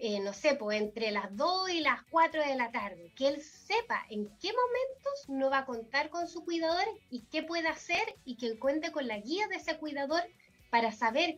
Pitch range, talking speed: 235-335 Hz, 215 wpm